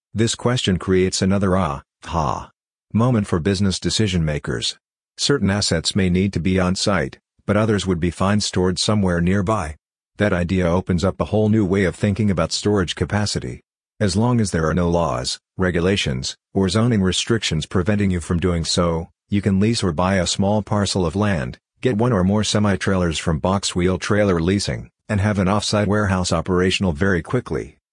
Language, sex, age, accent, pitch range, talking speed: English, male, 50-69, American, 90-105 Hz, 180 wpm